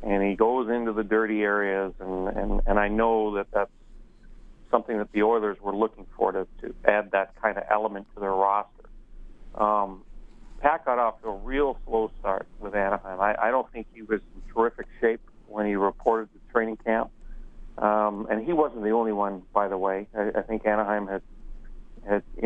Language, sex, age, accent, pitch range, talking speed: English, male, 40-59, American, 100-110 Hz, 200 wpm